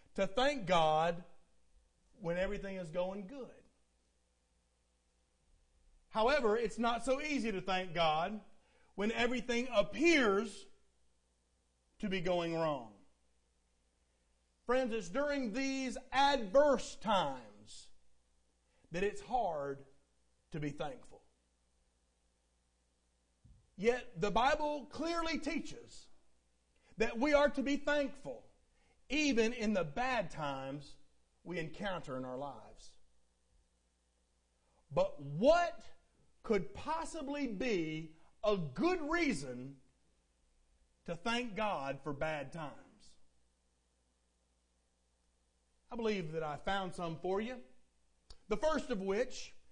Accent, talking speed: American, 100 wpm